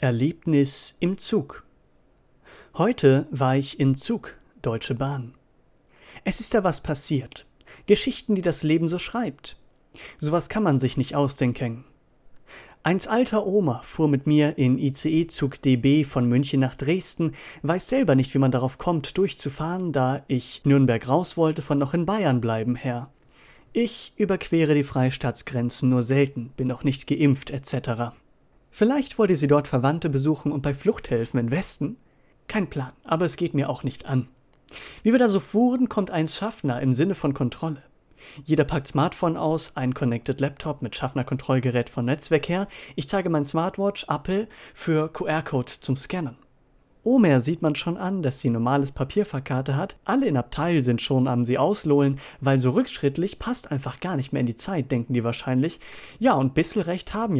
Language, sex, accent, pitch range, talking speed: German, male, German, 130-170 Hz, 165 wpm